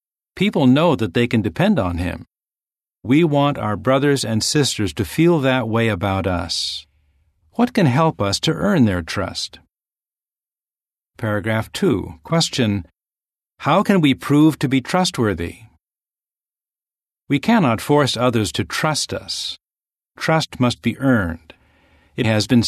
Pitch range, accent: 100-145 Hz, American